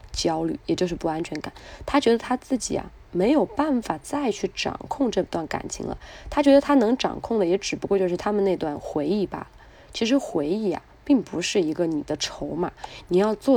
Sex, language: female, Chinese